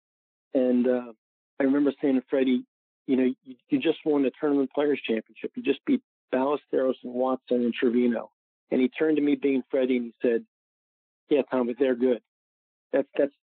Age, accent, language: 40-59, American, English